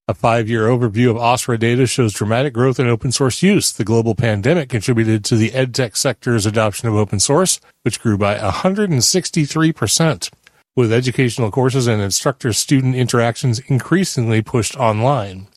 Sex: male